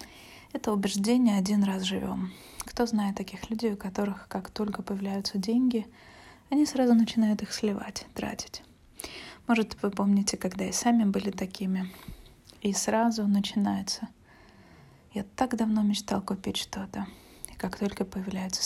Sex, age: female, 20-39